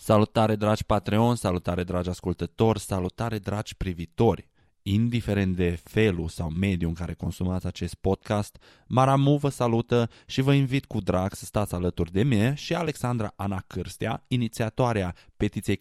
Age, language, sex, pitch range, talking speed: 20-39, Romanian, male, 90-120 Hz, 145 wpm